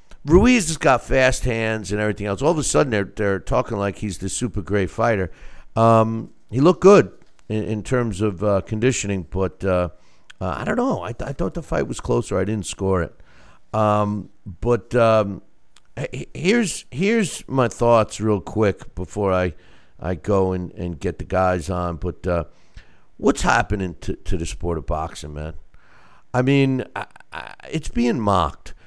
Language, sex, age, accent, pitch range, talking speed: English, male, 50-69, American, 90-120 Hz, 180 wpm